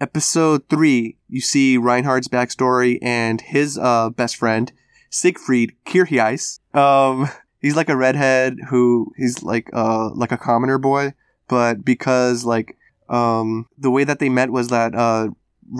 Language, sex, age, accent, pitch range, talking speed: English, male, 20-39, American, 120-140 Hz, 145 wpm